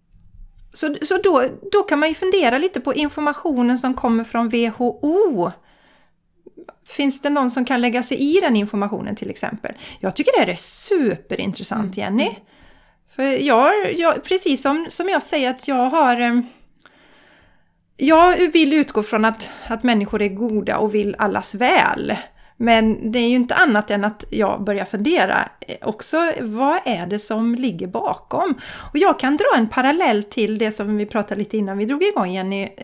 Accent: native